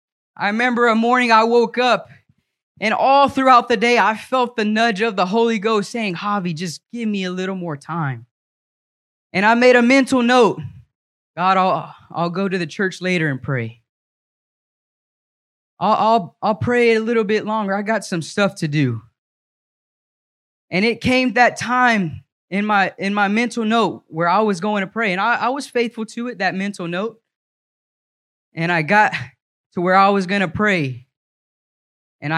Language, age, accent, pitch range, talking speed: English, 10-29, American, 165-220 Hz, 175 wpm